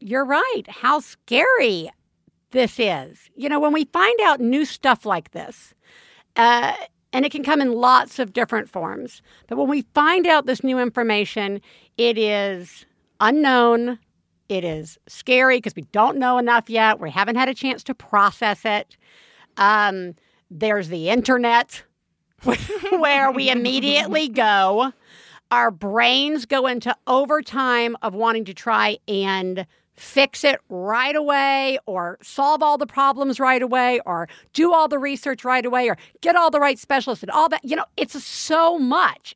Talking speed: 160 wpm